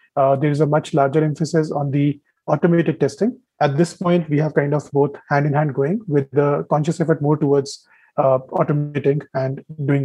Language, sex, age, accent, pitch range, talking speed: English, male, 30-49, Indian, 145-160 Hz, 185 wpm